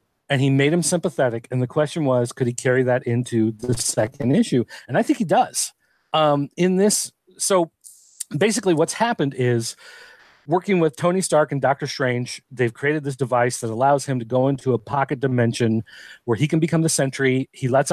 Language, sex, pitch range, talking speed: English, male, 125-160 Hz, 195 wpm